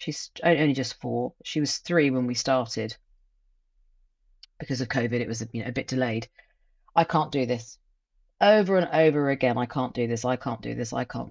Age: 40-59